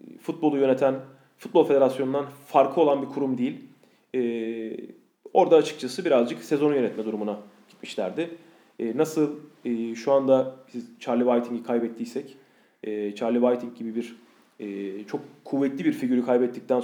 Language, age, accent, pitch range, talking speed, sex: Turkish, 30-49, native, 115-140 Hz, 130 wpm, male